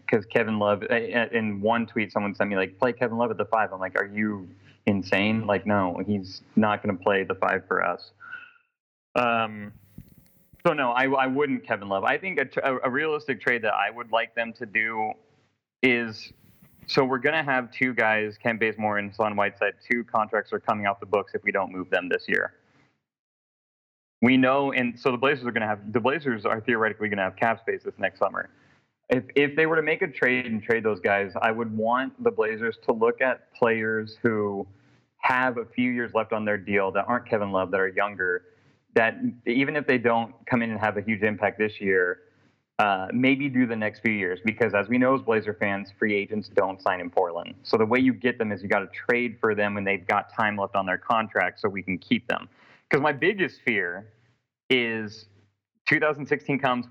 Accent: American